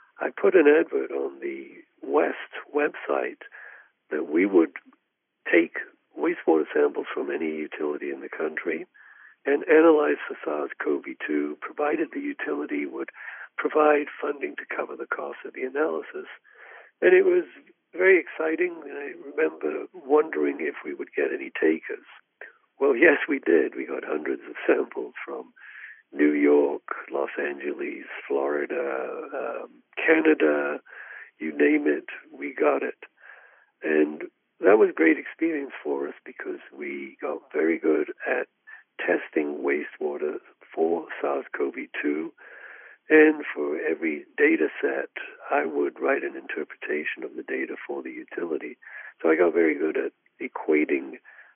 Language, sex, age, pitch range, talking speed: English, male, 60-79, 320-415 Hz, 135 wpm